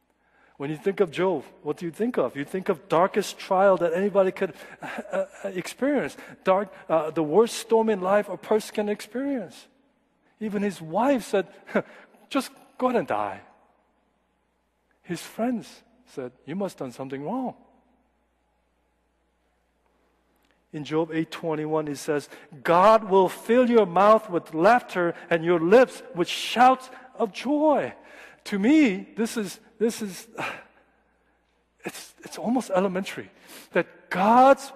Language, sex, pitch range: Korean, male, 140-230 Hz